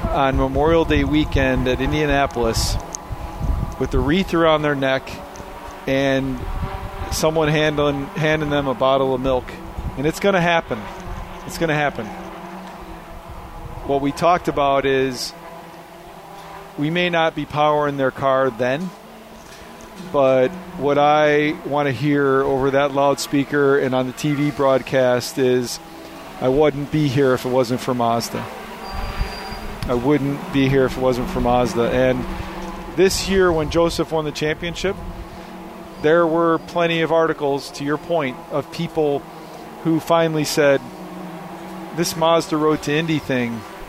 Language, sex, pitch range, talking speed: English, male, 130-165 Hz, 140 wpm